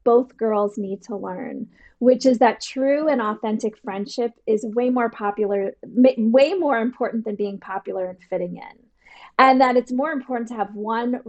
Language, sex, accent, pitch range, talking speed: English, female, American, 210-250 Hz, 175 wpm